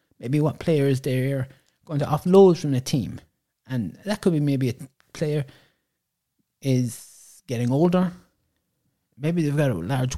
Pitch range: 130-165 Hz